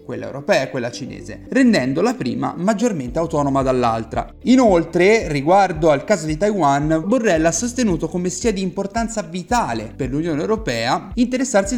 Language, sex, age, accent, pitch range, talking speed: Italian, male, 30-49, native, 130-210 Hz, 150 wpm